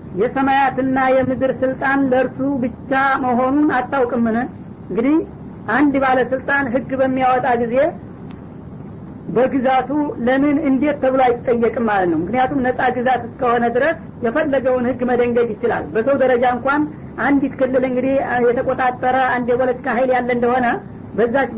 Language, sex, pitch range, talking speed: Amharic, female, 245-265 Hz, 120 wpm